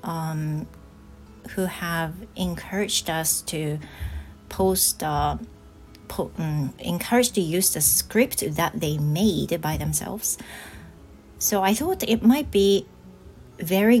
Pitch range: 145-200 Hz